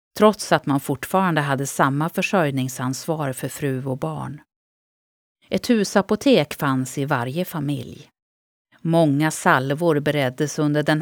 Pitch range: 130-170 Hz